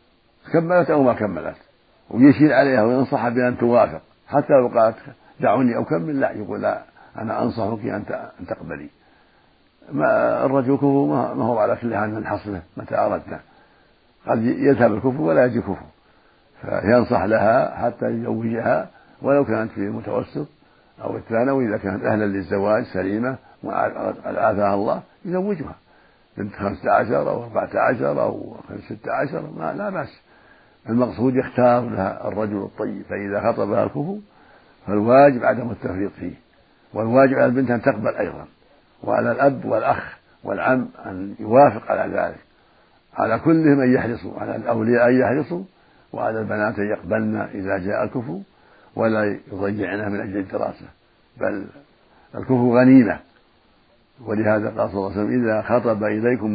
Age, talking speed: 60-79, 130 wpm